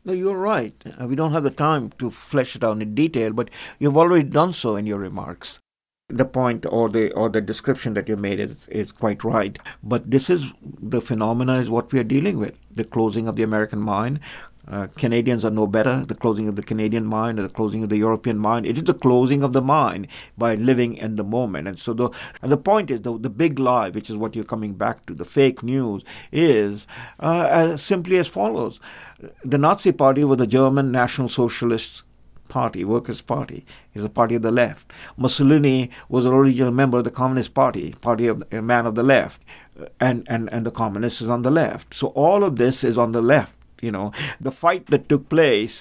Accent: Indian